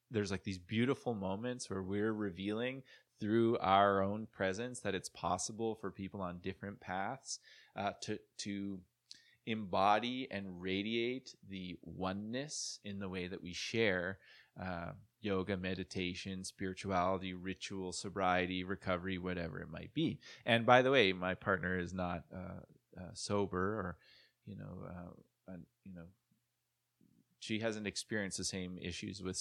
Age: 20-39